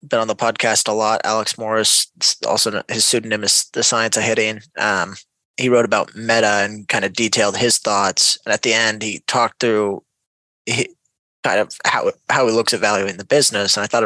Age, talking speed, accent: 20-39, 200 wpm, American